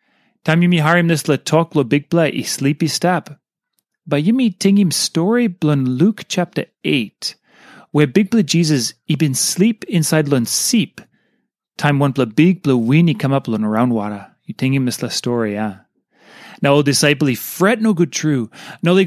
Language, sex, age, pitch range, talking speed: English, male, 30-49, 135-195 Hz, 200 wpm